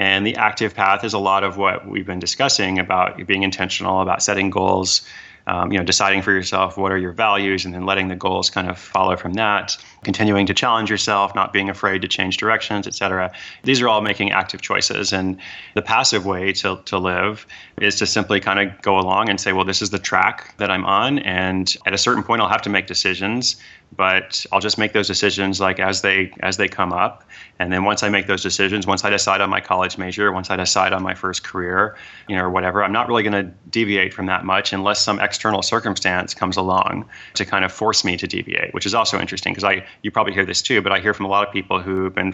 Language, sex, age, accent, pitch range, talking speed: English, male, 30-49, American, 95-100 Hz, 240 wpm